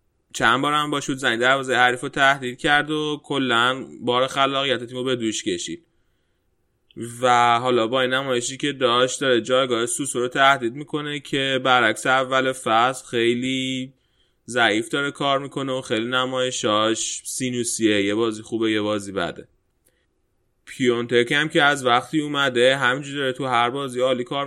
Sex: male